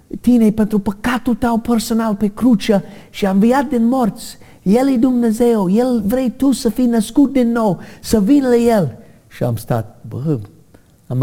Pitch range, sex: 125-205 Hz, male